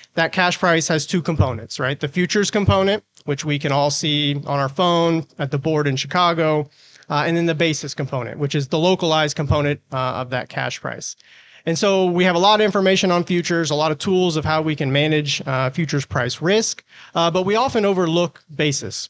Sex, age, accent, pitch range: male, 30-49, American, 145-180 Hz